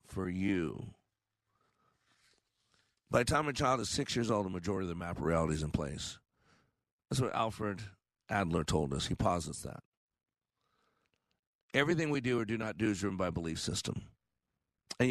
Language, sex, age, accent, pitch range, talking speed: English, male, 50-69, American, 100-130 Hz, 170 wpm